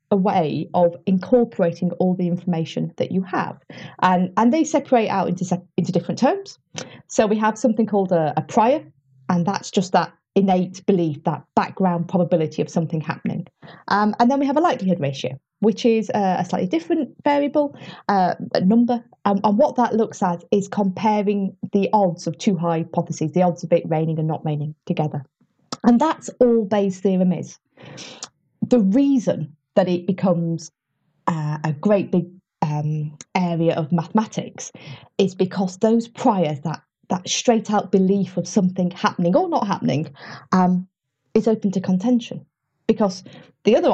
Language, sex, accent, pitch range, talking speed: English, female, British, 170-225 Hz, 165 wpm